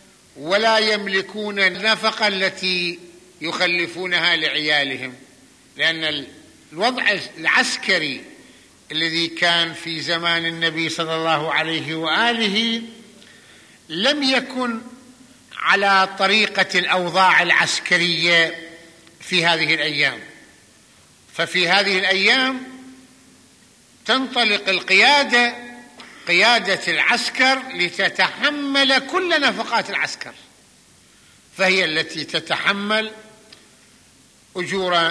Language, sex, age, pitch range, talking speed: Arabic, male, 50-69, 170-240 Hz, 70 wpm